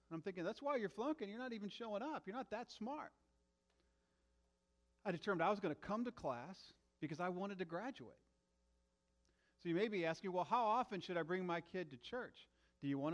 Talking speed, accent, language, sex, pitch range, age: 220 wpm, American, English, male, 105-165 Hz, 40-59